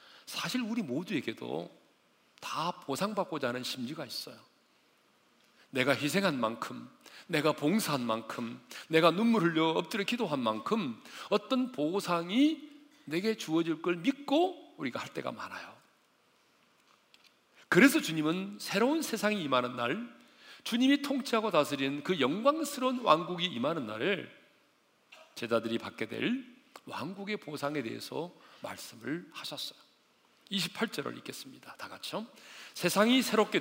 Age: 40-59